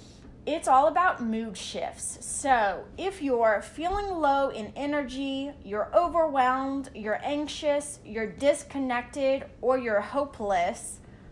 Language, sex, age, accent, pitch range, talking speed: English, female, 20-39, American, 215-290 Hz, 110 wpm